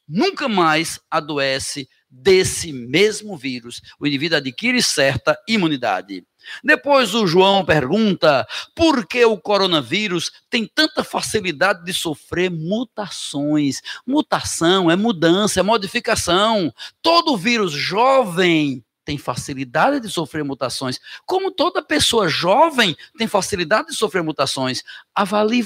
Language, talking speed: Portuguese, 110 wpm